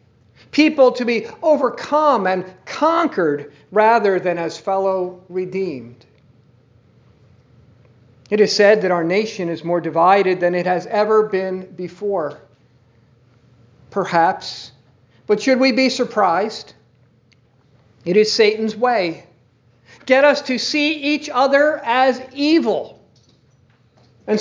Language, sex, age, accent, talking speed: English, male, 50-69, American, 110 wpm